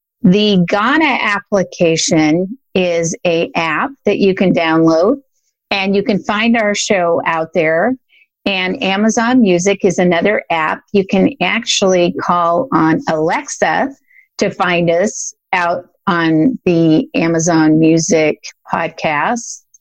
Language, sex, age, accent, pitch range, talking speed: English, female, 50-69, American, 170-225 Hz, 120 wpm